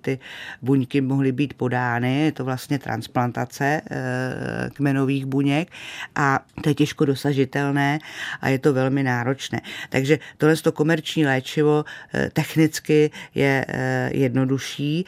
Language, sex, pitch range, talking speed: Czech, female, 135-150 Hz, 115 wpm